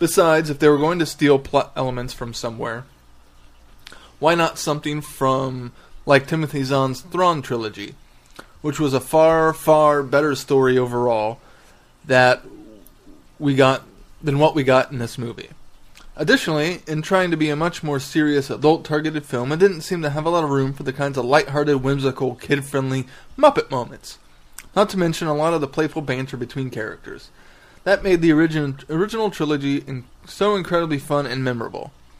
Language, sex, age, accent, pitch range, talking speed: English, male, 20-39, American, 125-160 Hz, 165 wpm